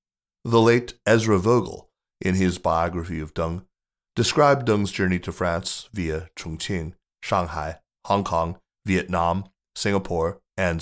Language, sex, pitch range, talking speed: English, male, 85-105 Hz, 120 wpm